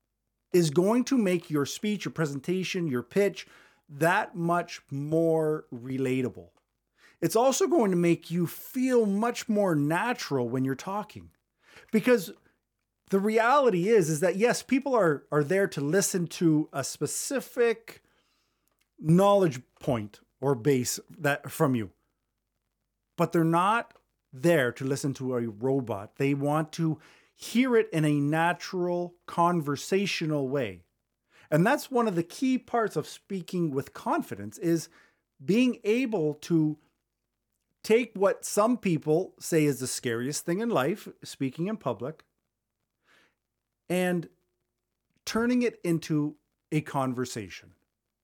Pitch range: 135-195 Hz